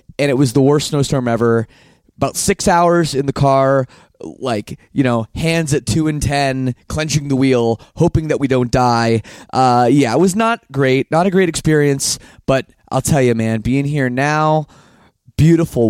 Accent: American